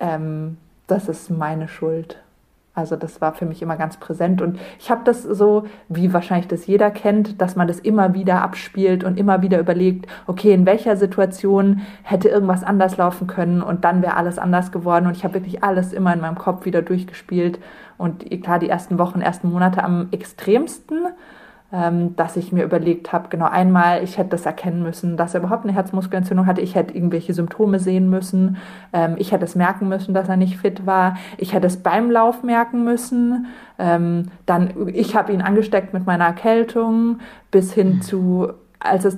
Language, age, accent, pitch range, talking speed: German, 20-39, German, 175-205 Hz, 185 wpm